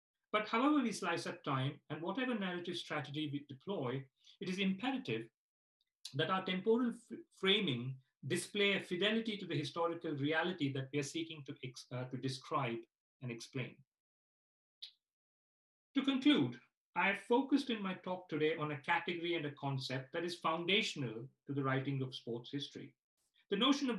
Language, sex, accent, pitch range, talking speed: English, male, Indian, 140-190 Hz, 160 wpm